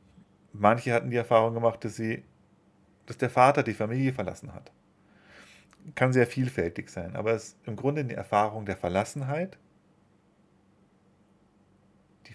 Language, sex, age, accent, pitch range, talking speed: German, male, 40-59, German, 95-120 Hz, 130 wpm